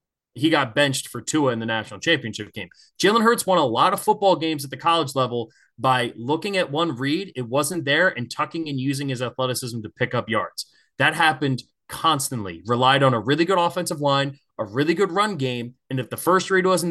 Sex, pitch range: male, 130-185 Hz